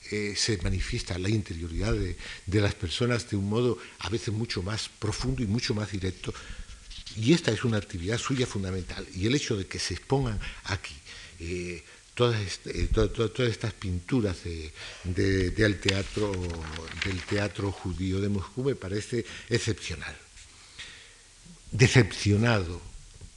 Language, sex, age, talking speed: Spanish, male, 60-79, 150 wpm